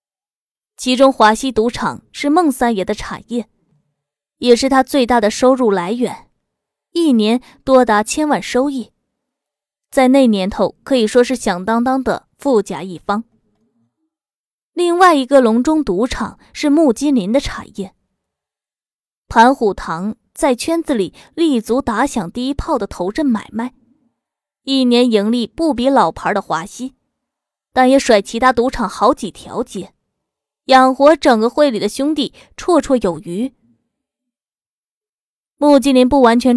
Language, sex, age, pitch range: Chinese, female, 20-39, 215-275 Hz